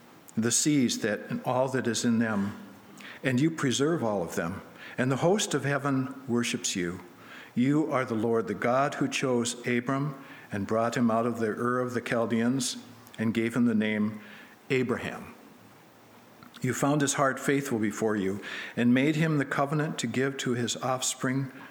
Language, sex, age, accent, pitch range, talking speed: English, male, 60-79, American, 115-135 Hz, 175 wpm